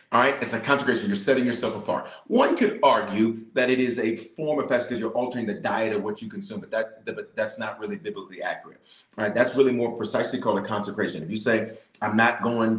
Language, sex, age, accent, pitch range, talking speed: English, male, 40-59, American, 110-175 Hz, 240 wpm